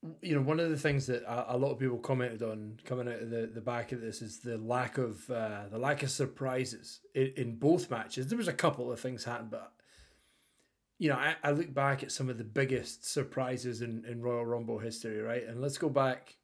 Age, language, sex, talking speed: 30-49, English, male, 235 wpm